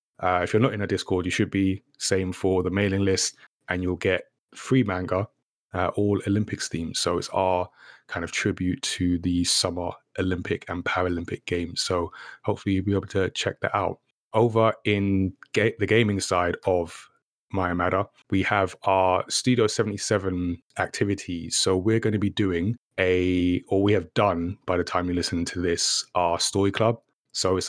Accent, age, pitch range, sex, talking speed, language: British, 20-39, 90-100 Hz, male, 180 wpm, English